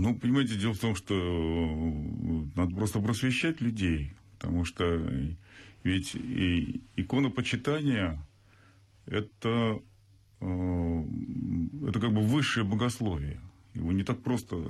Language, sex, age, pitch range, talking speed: Russian, male, 40-59, 90-115 Hz, 105 wpm